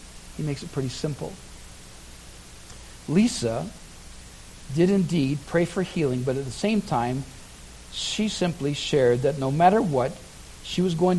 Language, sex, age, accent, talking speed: English, male, 60-79, American, 140 wpm